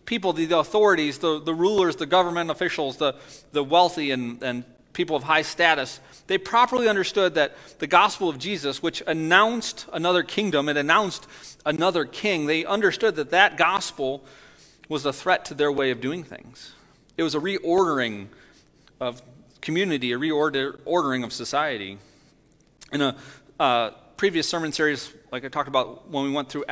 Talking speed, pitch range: 165 wpm, 135-175 Hz